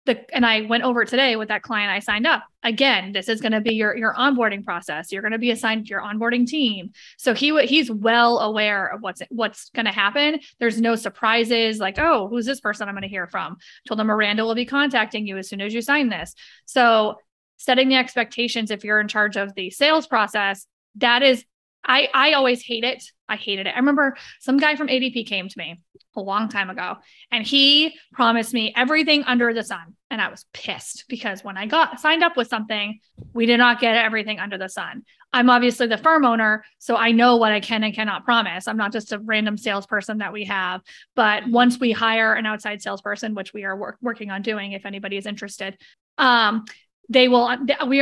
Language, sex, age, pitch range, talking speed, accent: English, female, 20-39, 210-245 Hz, 220 wpm, American